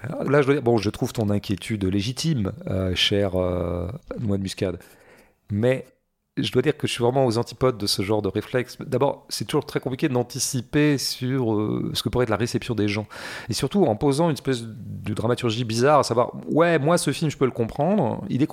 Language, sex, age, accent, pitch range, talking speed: French, male, 40-59, French, 105-140 Hz, 215 wpm